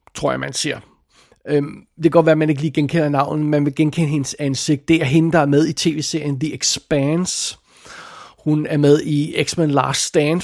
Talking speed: 205 wpm